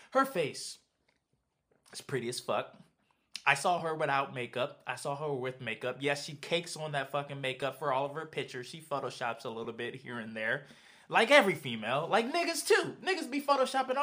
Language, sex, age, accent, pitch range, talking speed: English, male, 20-39, American, 135-210 Hz, 195 wpm